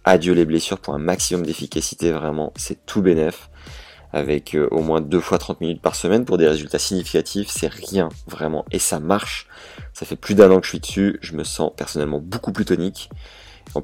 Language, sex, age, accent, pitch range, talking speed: French, male, 30-49, French, 75-95 Hz, 205 wpm